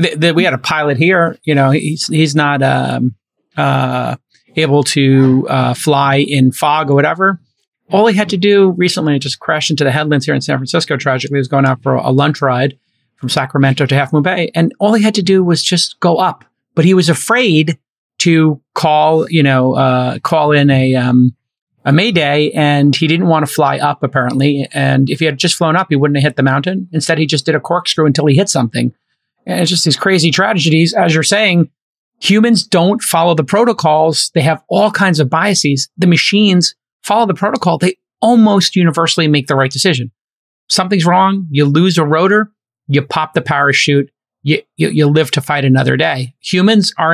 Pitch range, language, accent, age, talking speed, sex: 140-180 Hz, English, American, 30-49, 200 wpm, male